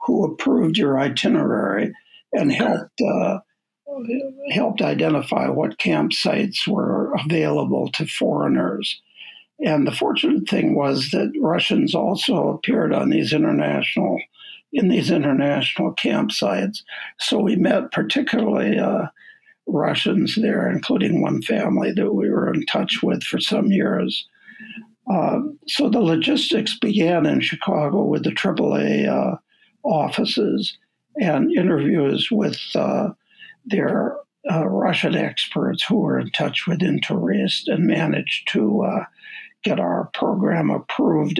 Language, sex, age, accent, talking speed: English, male, 60-79, American, 120 wpm